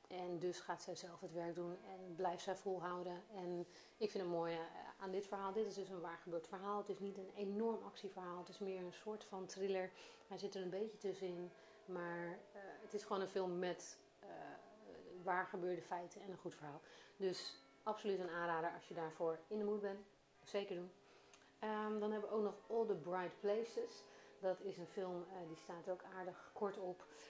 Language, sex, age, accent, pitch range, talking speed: Dutch, female, 40-59, Dutch, 175-200 Hz, 205 wpm